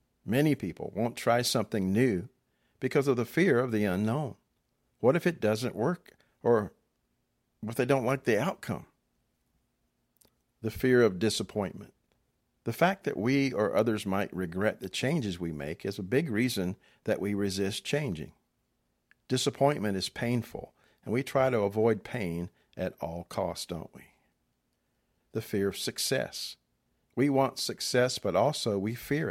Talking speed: 150 wpm